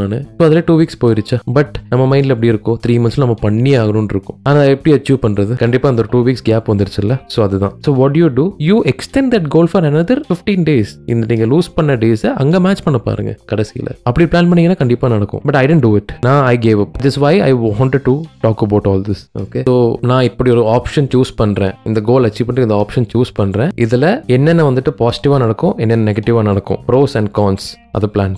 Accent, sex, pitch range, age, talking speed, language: native, male, 105-140 Hz, 20-39, 35 wpm, Tamil